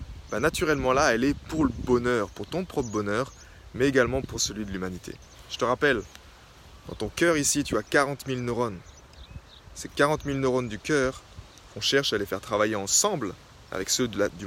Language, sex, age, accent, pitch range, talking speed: French, male, 20-39, French, 100-140 Hz, 200 wpm